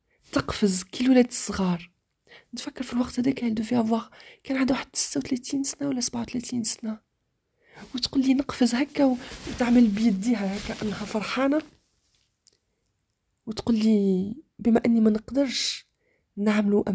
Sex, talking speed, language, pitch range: female, 125 wpm, Arabic, 190-250 Hz